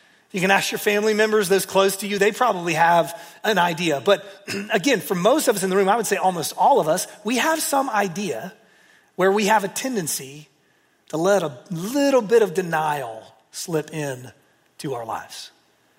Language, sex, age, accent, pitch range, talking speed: English, male, 30-49, American, 170-230 Hz, 195 wpm